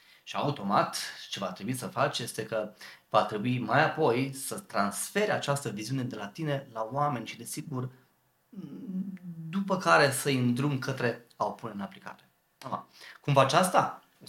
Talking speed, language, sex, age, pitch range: 165 wpm, Romanian, male, 30-49, 125-175 Hz